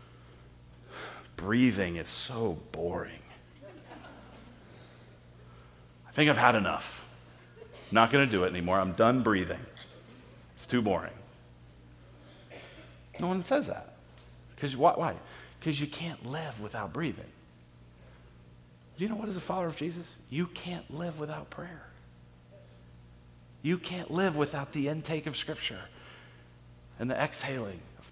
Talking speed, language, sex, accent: 130 wpm, English, male, American